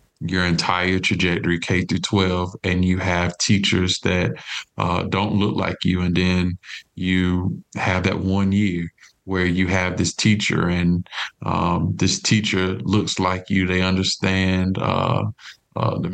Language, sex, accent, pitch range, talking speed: English, male, American, 90-100 Hz, 150 wpm